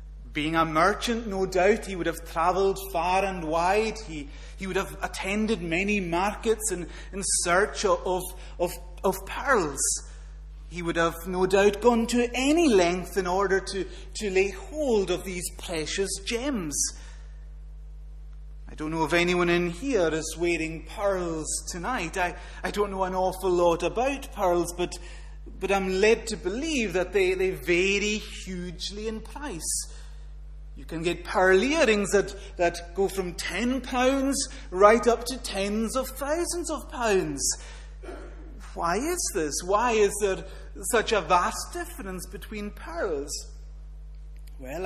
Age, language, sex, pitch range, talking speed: 30-49, English, male, 165-210 Hz, 145 wpm